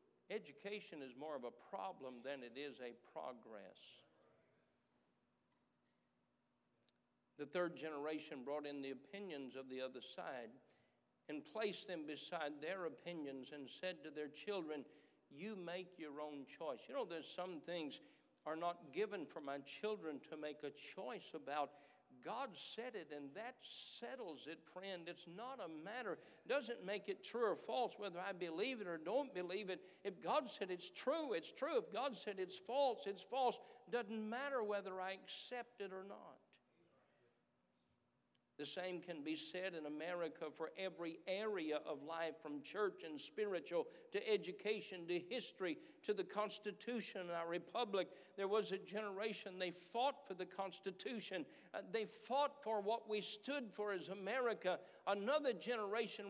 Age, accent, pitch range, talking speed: 60-79, American, 170-225 Hz, 160 wpm